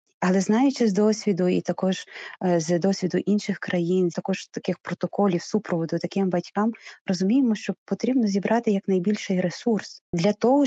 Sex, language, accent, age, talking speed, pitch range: female, Ukrainian, native, 30-49, 135 wpm, 180-215 Hz